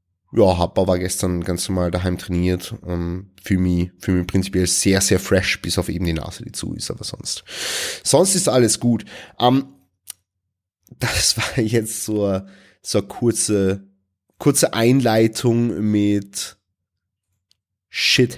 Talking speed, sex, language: 135 wpm, male, German